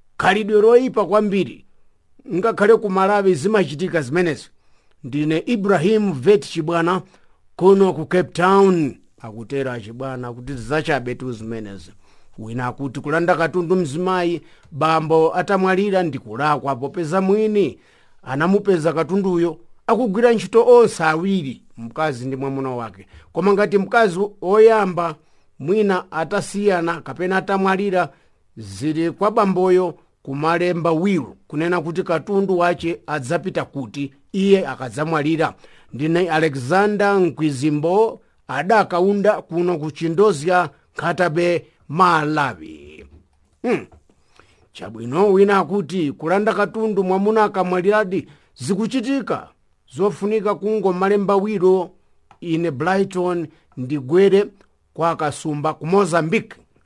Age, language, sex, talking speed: 50-69, English, male, 100 wpm